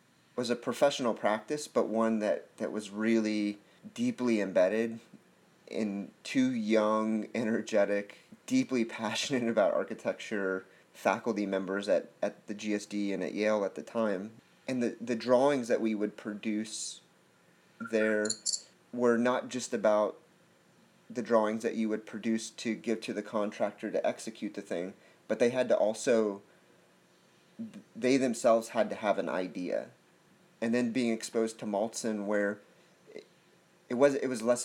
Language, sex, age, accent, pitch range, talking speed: English, male, 30-49, American, 105-125 Hz, 145 wpm